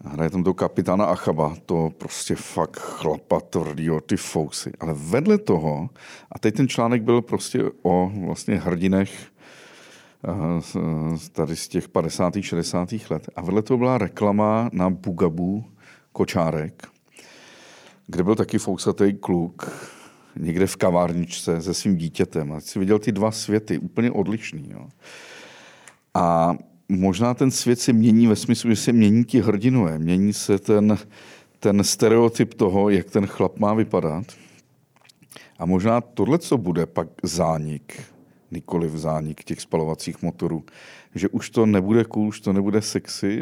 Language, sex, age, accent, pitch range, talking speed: Czech, male, 50-69, native, 85-110 Hz, 140 wpm